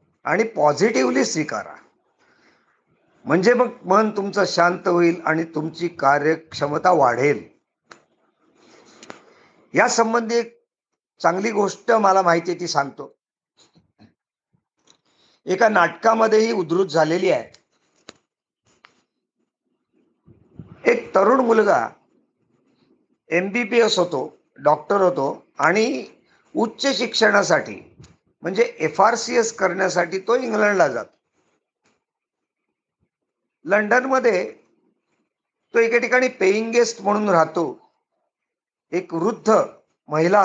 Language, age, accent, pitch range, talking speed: Marathi, 50-69, native, 175-235 Hz, 85 wpm